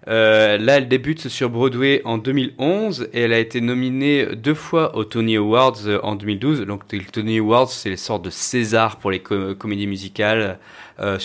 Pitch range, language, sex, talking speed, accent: 110-130 Hz, French, male, 190 wpm, French